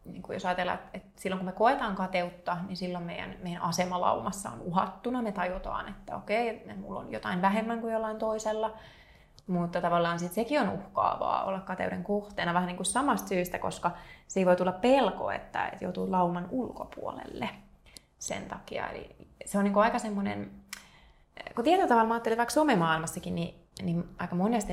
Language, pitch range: Finnish, 175-215 Hz